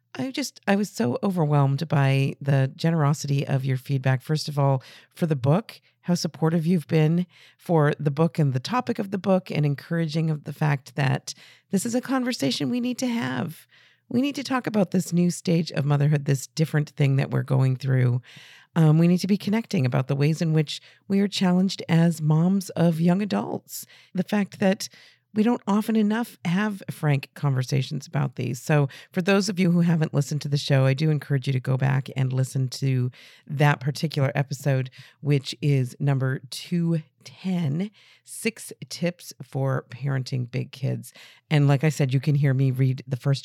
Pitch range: 135-175 Hz